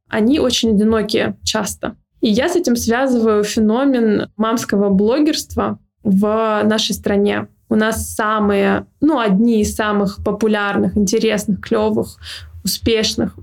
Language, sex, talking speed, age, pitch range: Russian, female, 115 wpm, 20-39, 210-240 Hz